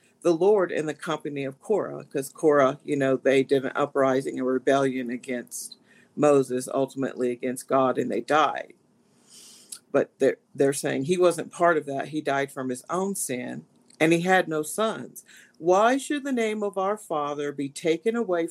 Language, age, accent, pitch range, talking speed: English, 50-69, American, 150-230 Hz, 180 wpm